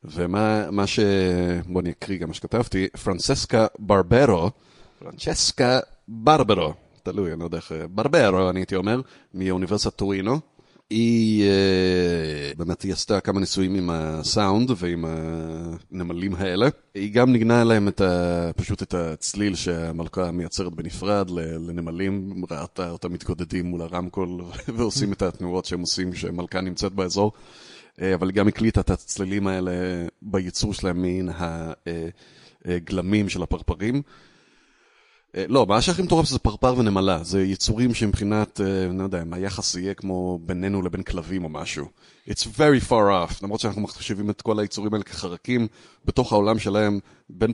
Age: 30-49